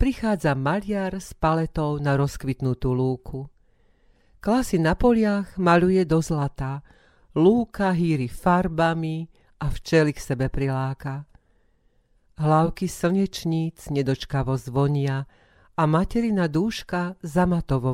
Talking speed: 95 wpm